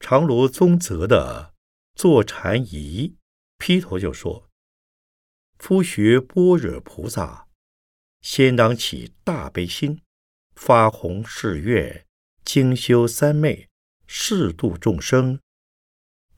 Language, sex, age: Chinese, male, 50-69